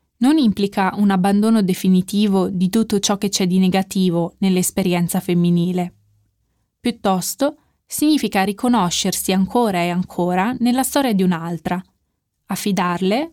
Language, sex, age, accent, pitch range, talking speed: Italian, female, 20-39, native, 185-235 Hz, 115 wpm